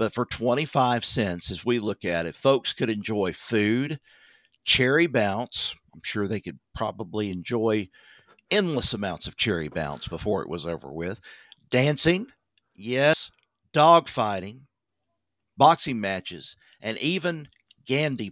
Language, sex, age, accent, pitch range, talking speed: English, male, 50-69, American, 105-150 Hz, 130 wpm